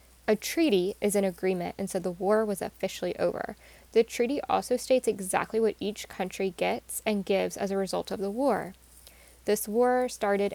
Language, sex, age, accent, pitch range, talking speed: English, female, 10-29, American, 180-215 Hz, 180 wpm